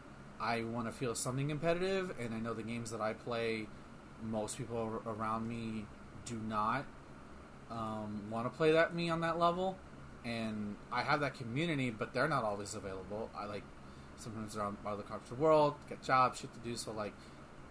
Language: English